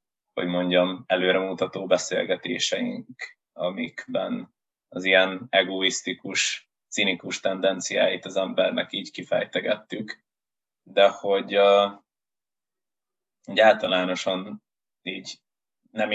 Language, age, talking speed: Hungarian, 20-39, 75 wpm